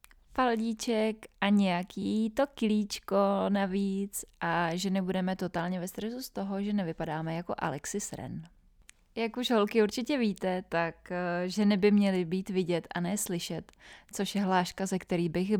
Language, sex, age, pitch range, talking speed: Czech, female, 20-39, 165-195 Hz, 140 wpm